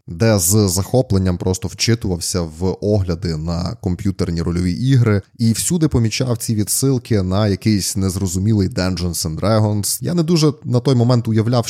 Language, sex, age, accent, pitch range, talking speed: Ukrainian, male, 20-39, native, 95-115 Hz, 150 wpm